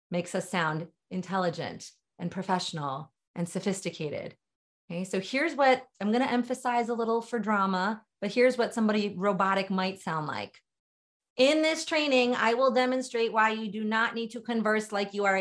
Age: 30-49